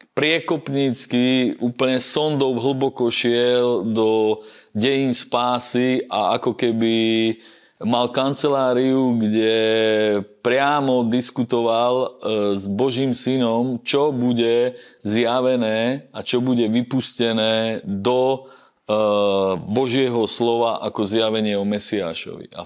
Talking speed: 90 wpm